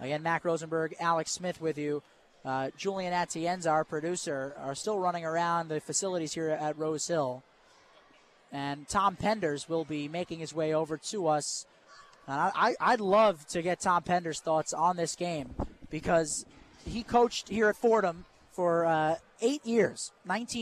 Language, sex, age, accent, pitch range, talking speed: English, male, 20-39, American, 155-190 Hz, 170 wpm